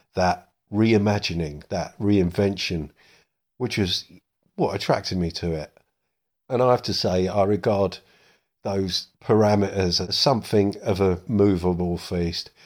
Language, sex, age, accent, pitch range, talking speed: English, male, 50-69, British, 85-100 Hz, 125 wpm